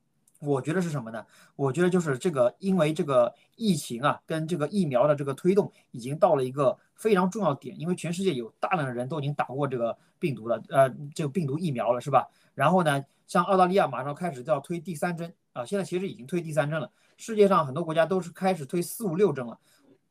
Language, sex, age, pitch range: Chinese, male, 30-49, 140-200 Hz